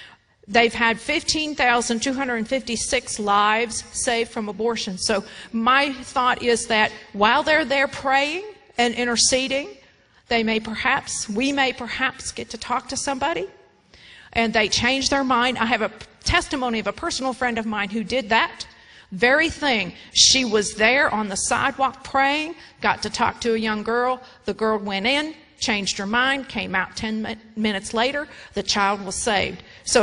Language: English